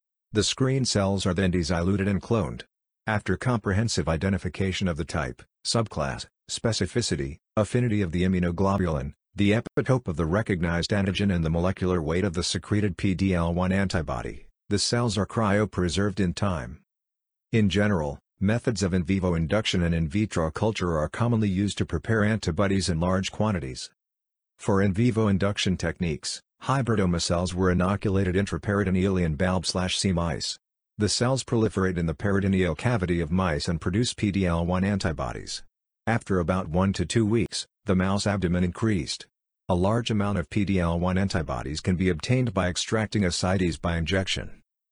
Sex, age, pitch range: male, 50-69, 90-105 Hz